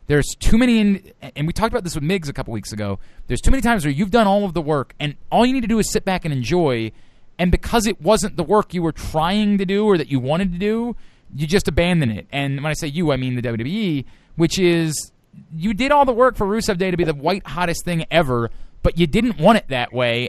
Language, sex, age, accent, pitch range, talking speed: English, male, 30-49, American, 150-210 Hz, 270 wpm